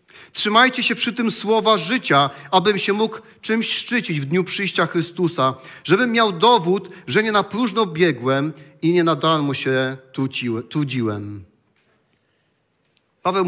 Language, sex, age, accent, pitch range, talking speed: Polish, male, 40-59, native, 155-205 Hz, 135 wpm